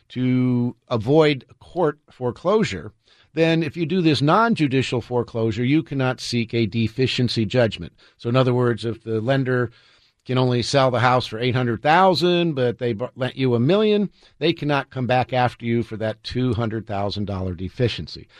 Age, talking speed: 50-69, 170 wpm